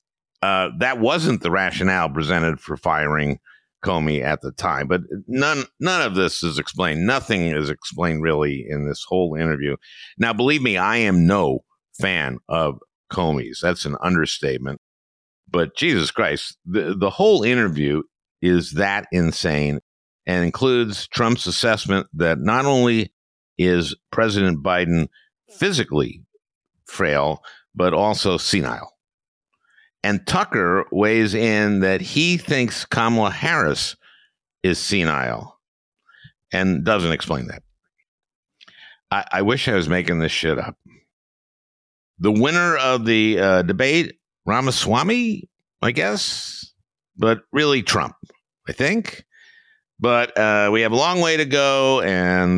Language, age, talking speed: English, 50-69, 130 wpm